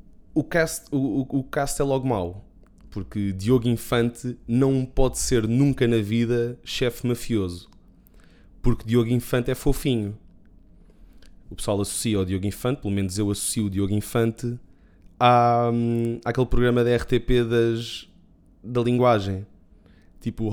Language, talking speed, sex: Portuguese, 135 wpm, male